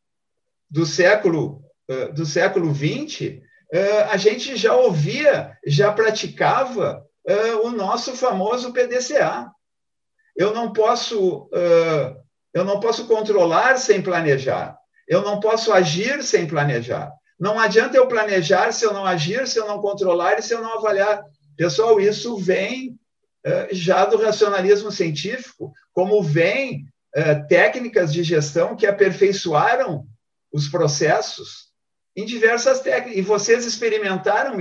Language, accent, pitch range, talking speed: Portuguese, Brazilian, 170-240 Hz, 115 wpm